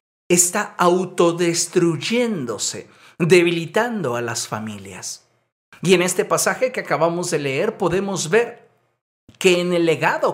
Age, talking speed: 50-69, 115 wpm